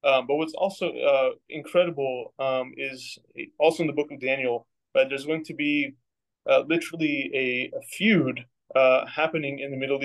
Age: 20-39